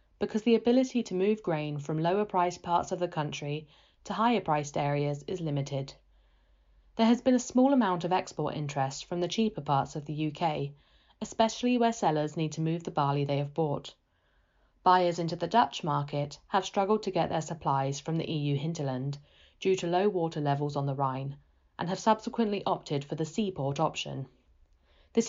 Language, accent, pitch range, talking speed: English, British, 140-185 Hz, 185 wpm